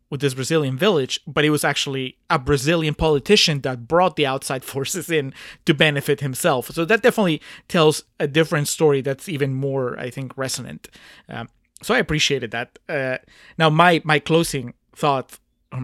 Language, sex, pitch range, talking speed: English, male, 135-170 Hz, 170 wpm